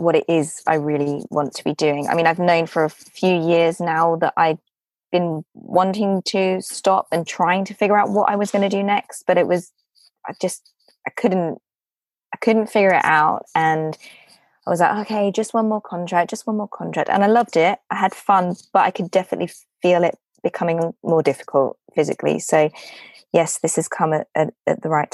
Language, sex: English, female